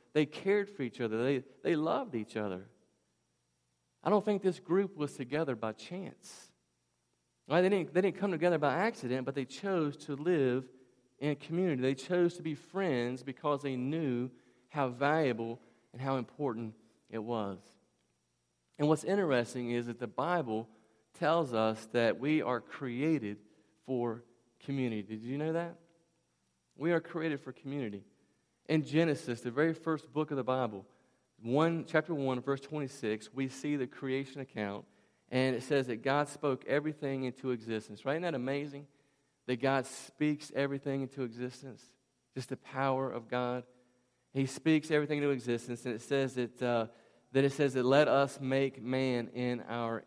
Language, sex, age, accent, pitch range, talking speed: English, male, 40-59, American, 120-150 Hz, 165 wpm